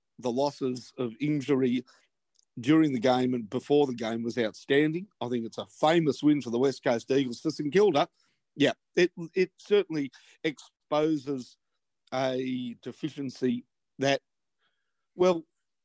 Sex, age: male, 50-69